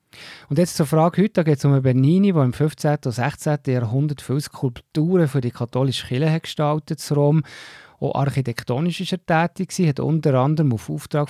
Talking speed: 190 wpm